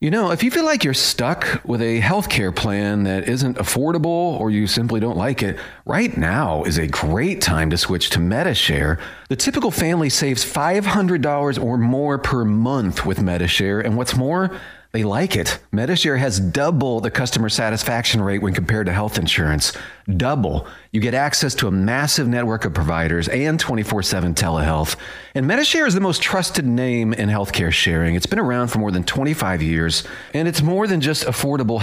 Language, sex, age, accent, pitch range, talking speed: English, male, 40-59, American, 100-145 Hz, 185 wpm